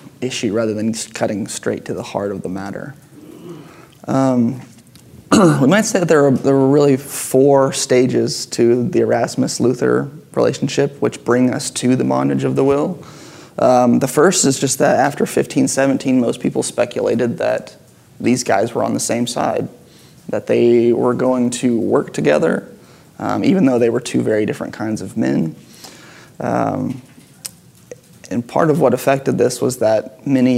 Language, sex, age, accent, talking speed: English, male, 20-39, American, 165 wpm